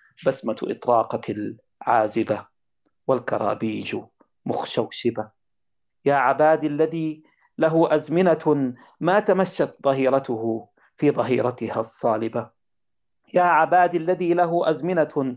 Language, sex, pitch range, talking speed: Arabic, male, 130-170 Hz, 80 wpm